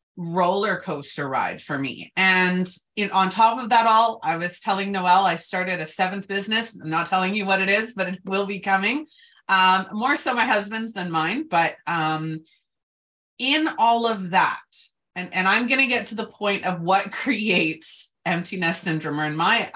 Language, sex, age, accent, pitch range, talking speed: English, female, 30-49, American, 170-225 Hz, 190 wpm